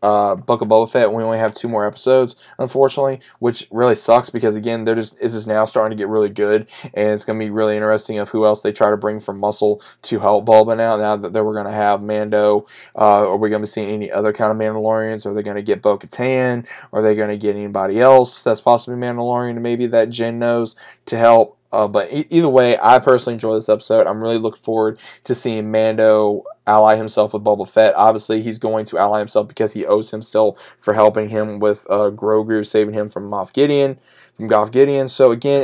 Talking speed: 230 wpm